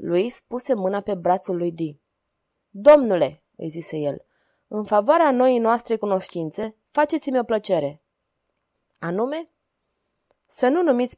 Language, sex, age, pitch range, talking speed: Romanian, female, 20-39, 185-260 Hz, 125 wpm